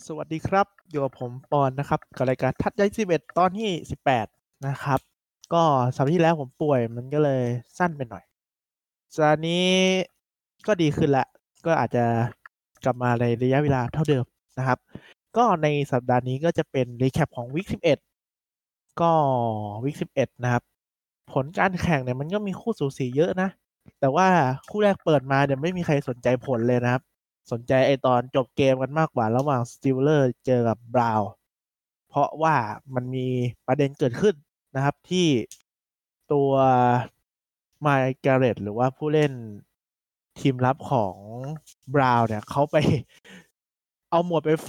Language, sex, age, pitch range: Thai, male, 20-39, 125-155 Hz